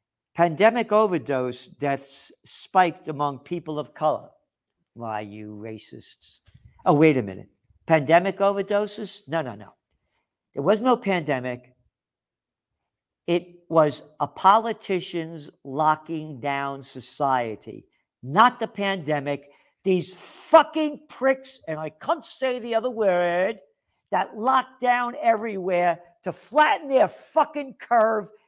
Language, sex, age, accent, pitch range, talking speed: English, male, 50-69, American, 150-215 Hz, 110 wpm